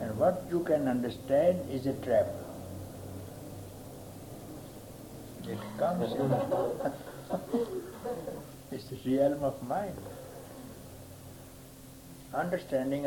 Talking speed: 80 wpm